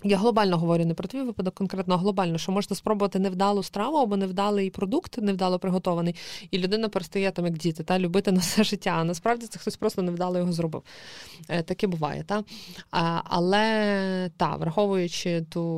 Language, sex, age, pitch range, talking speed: Ukrainian, female, 20-39, 175-210 Hz, 175 wpm